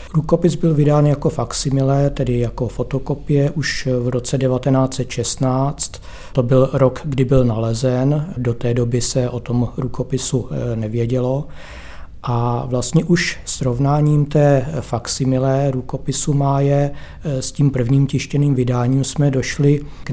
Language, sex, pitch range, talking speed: Czech, male, 125-140 Hz, 130 wpm